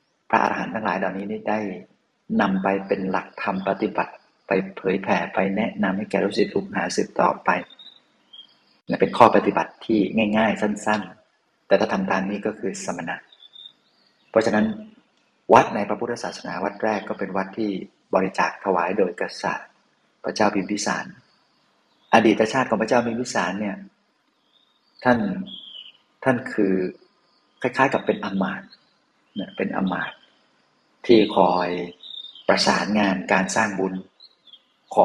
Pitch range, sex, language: 95-110 Hz, male, Thai